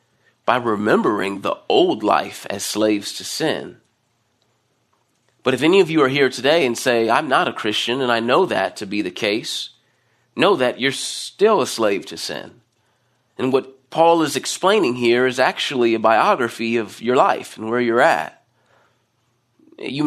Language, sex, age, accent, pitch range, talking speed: English, male, 30-49, American, 120-180 Hz, 170 wpm